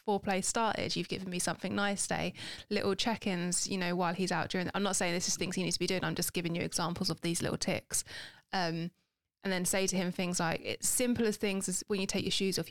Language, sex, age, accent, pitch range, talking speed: English, female, 20-39, British, 175-205 Hz, 265 wpm